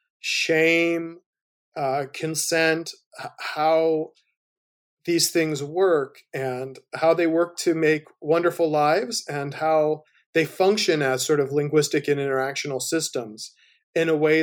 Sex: male